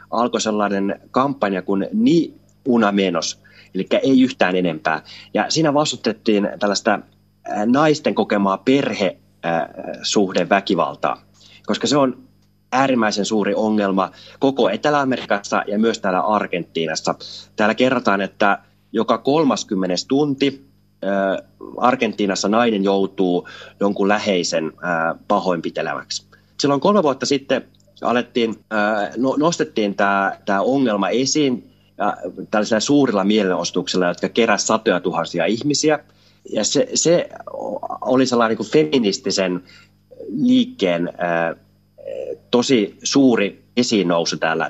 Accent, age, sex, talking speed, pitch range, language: native, 30-49, male, 100 wpm, 95-130 Hz, Finnish